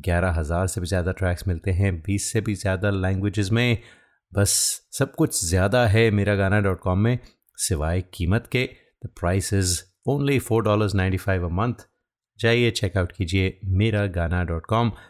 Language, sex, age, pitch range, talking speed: Hindi, male, 30-49, 90-110 Hz, 150 wpm